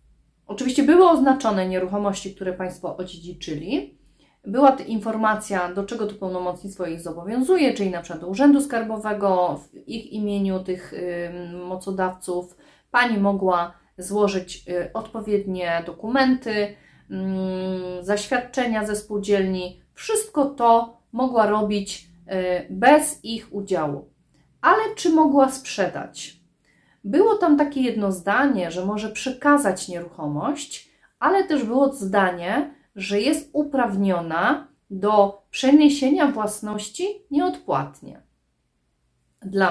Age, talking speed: 30-49, 105 wpm